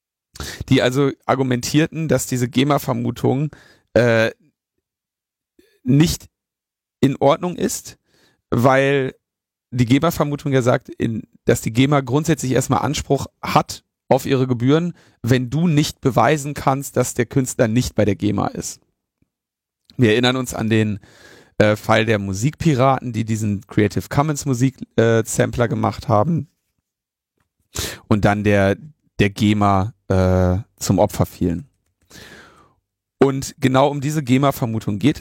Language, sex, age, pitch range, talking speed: German, male, 40-59, 100-135 Hz, 120 wpm